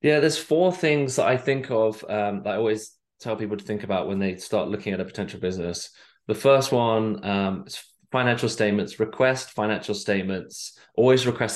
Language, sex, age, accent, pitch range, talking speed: English, male, 20-39, British, 95-110 Hz, 190 wpm